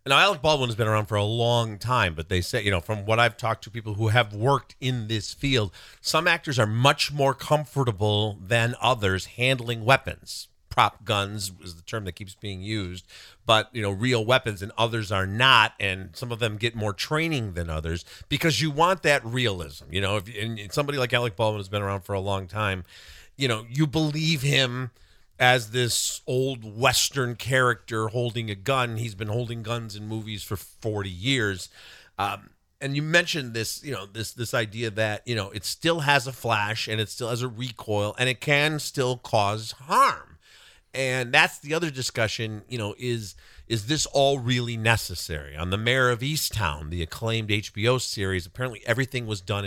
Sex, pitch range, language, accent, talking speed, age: male, 105-130 Hz, English, American, 195 wpm, 40-59